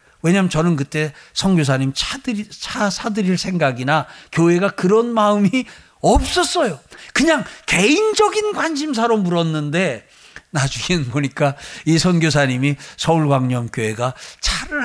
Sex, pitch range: male, 155-235 Hz